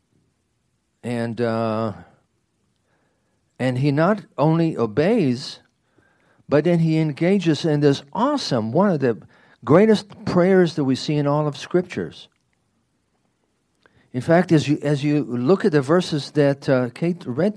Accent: American